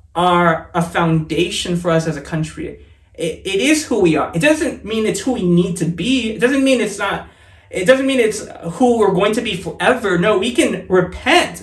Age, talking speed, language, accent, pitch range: 20-39, 215 wpm, English, American, 160-235 Hz